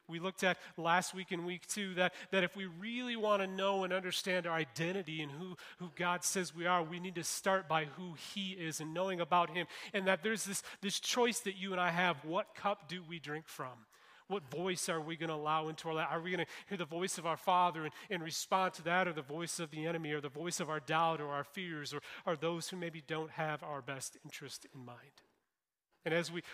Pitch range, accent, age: 150-190 Hz, American, 30-49